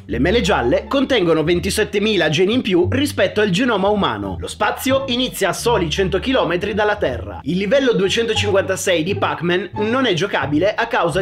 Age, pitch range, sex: 30-49, 170-230 Hz, male